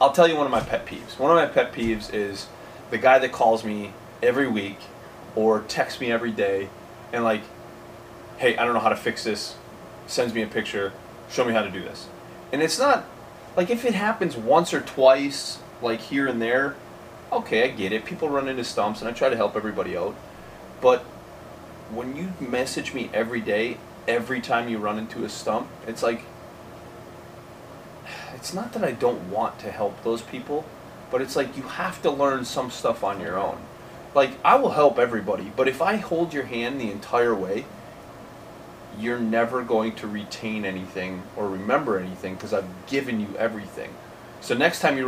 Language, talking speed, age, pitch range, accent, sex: English, 195 wpm, 20-39, 105-135 Hz, American, male